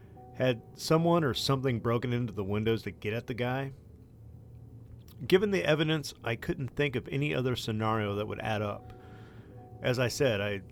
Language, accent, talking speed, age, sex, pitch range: English, American, 180 wpm, 40-59, male, 110-130 Hz